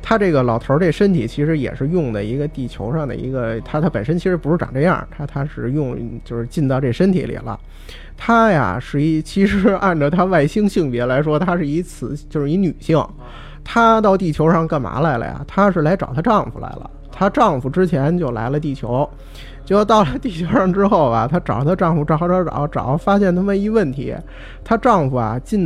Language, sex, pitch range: Chinese, male, 135-200 Hz